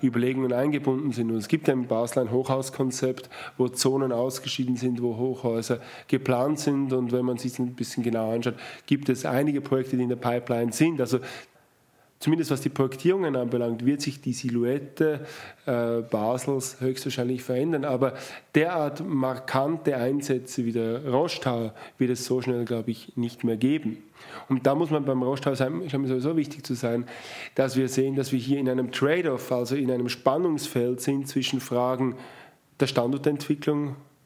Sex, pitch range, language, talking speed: male, 125-140 Hz, German, 170 wpm